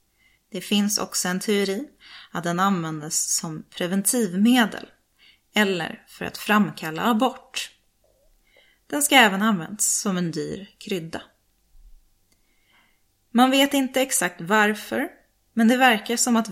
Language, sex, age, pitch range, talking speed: Swedish, female, 30-49, 185-230 Hz, 120 wpm